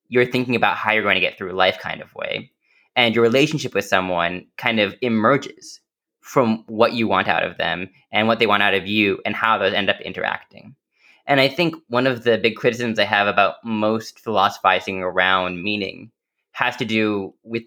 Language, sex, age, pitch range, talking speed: English, male, 20-39, 105-130 Hz, 205 wpm